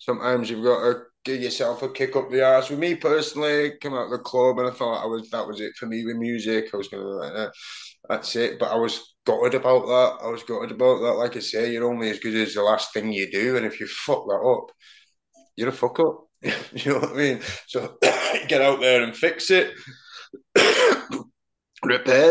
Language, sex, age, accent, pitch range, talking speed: English, male, 20-39, British, 115-140 Hz, 220 wpm